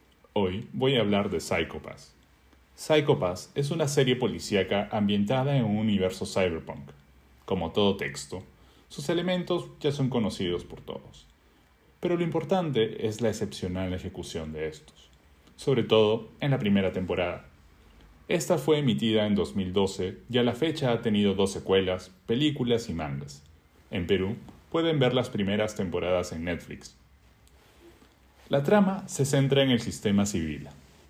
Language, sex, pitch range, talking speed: Spanish, male, 85-120 Hz, 145 wpm